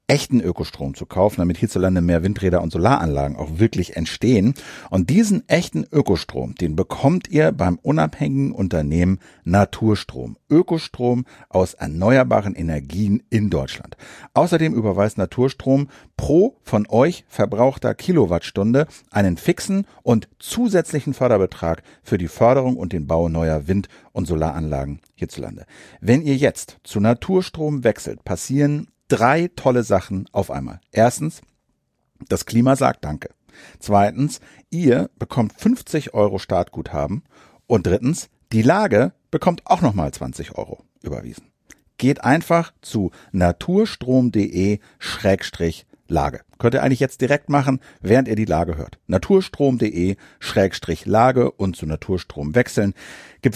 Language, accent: German, German